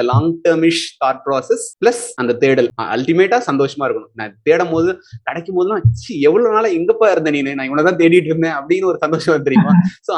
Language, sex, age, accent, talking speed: Tamil, male, 30-49, native, 185 wpm